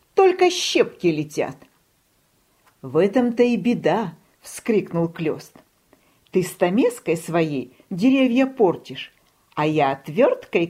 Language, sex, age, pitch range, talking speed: Russian, female, 50-69, 165-275 Hz, 95 wpm